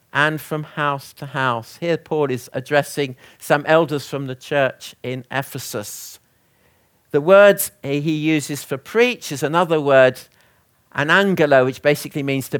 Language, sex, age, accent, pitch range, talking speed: English, male, 50-69, British, 125-155 Hz, 150 wpm